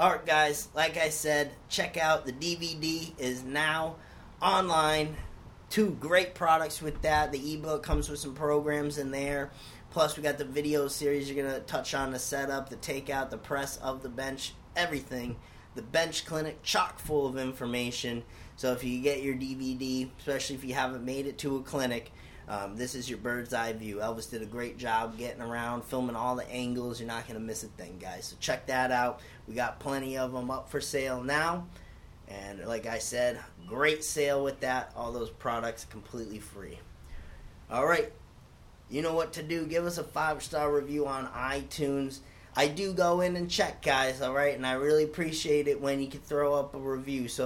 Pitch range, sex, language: 125-150 Hz, male, English